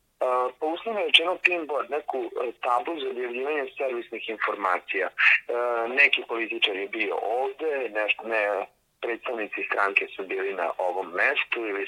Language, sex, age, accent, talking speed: Croatian, male, 40-59, Italian, 145 wpm